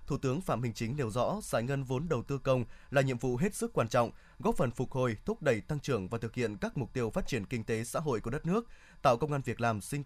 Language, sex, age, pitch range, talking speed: Vietnamese, male, 20-39, 120-155 Hz, 290 wpm